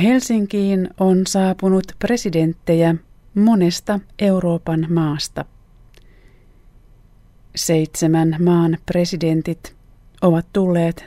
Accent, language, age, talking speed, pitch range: native, Finnish, 30-49, 65 wpm, 130-180 Hz